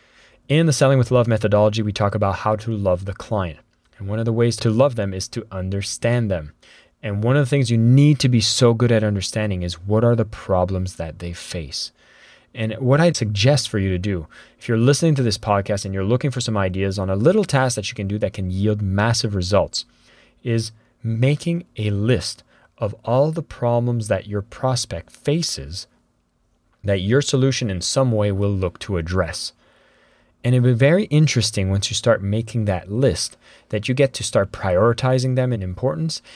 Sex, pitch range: male, 100-130 Hz